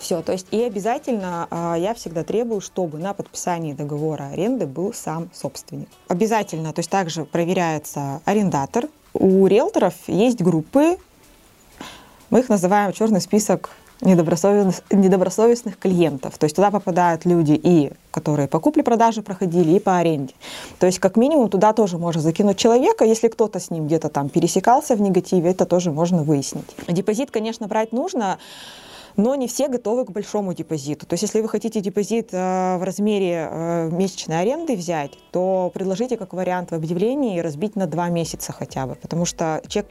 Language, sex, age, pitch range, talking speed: Russian, female, 20-39, 165-210 Hz, 160 wpm